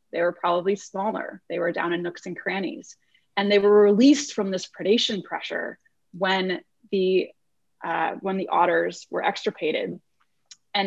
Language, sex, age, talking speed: English, female, 20-39, 155 wpm